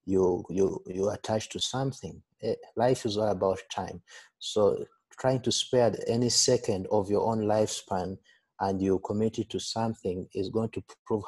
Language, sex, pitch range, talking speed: English, male, 100-115 Hz, 165 wpm